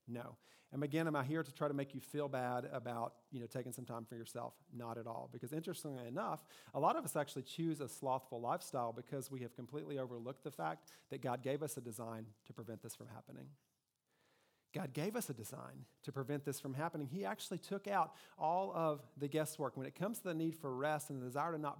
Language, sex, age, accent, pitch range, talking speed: English, male, 40-59, American, 120-150 Hz, 235 wpm